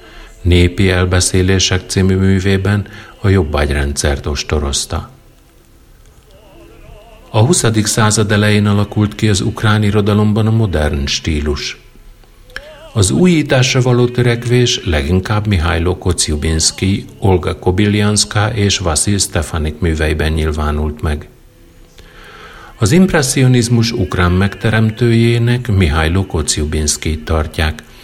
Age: 50-69